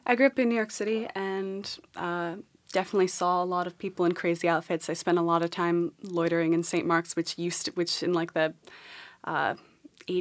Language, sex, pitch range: English, female, 160-180 Hz